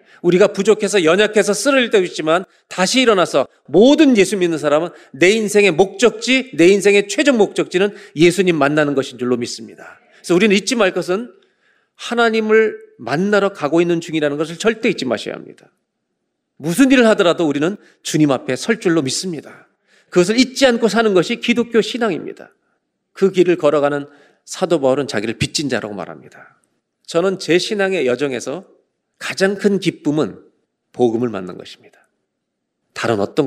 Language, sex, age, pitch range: Korean, male, 40-59, 170-220 Hz